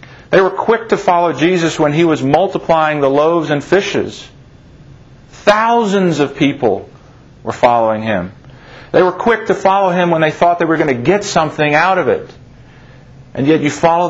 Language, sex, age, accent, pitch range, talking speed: English, male, 50-69, American, 125-155 Hz, 180 wpm